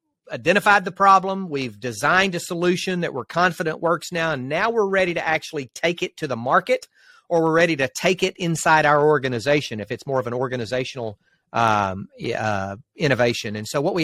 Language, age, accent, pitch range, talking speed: English, 40-59, American, 125-170 Hz, 190 wpm